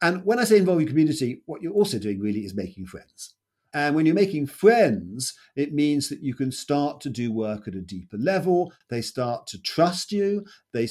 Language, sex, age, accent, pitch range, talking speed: English, male, 50-69, British, 110-155 Hz, 215 wpm